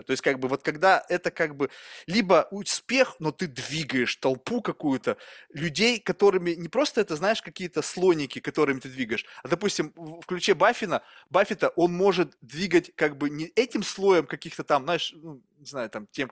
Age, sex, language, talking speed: 20-39, male, Russian, 180 wpm